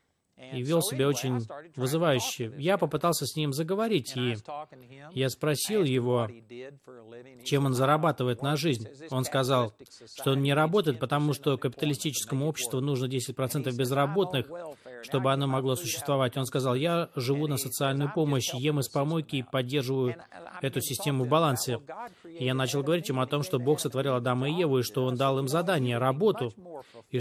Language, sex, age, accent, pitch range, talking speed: Russian, male, 20-39, native, 130-155 Hz, 160 wpm